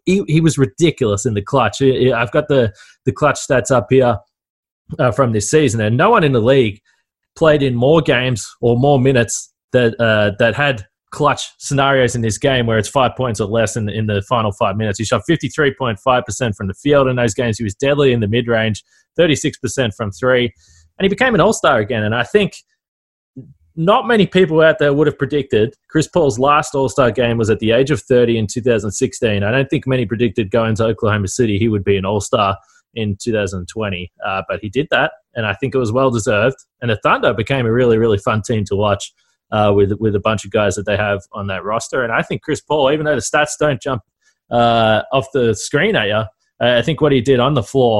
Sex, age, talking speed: male, 20-39, 220 wpm